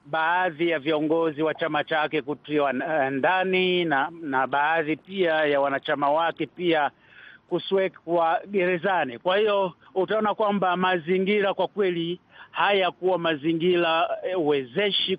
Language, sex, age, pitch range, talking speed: Swahili, male, 50-69, 160-195 Hz, 110 wpm